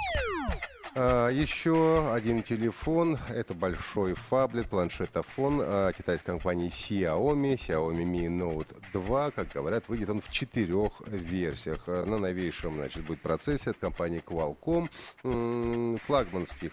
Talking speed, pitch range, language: 110 wpm, 95-135 Hz, Russian